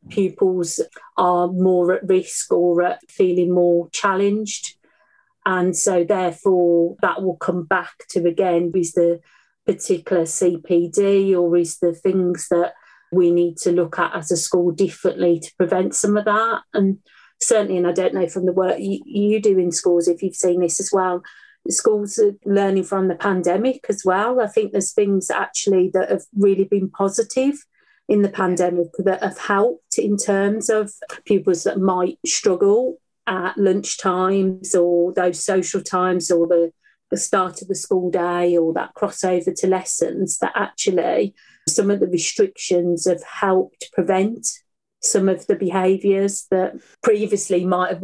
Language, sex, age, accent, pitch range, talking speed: English, female, 40-59, British, 180-205 Hz, 165 wpm